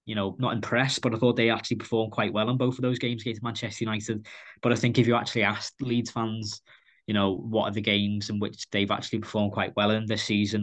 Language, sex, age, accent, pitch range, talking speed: English, male, 20-39, British, 105-120 Hz, 255 wpm